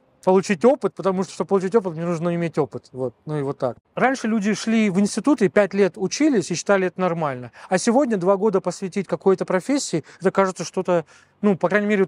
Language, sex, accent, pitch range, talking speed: Russian, male, native, 160-200 Hz, 210 wpm